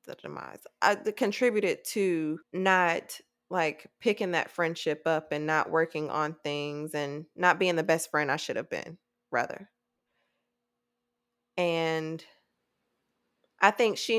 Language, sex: English, female